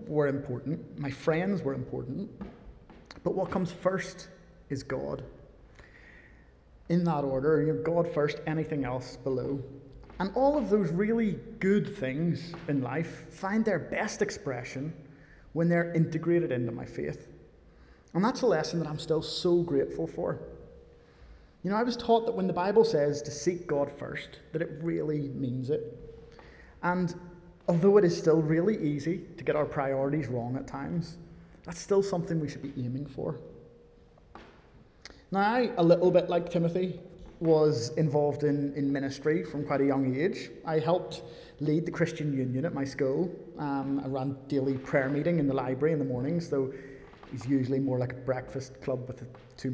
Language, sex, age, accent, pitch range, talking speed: English, male, 30-49, British, 135-175 Hz, 170 wpm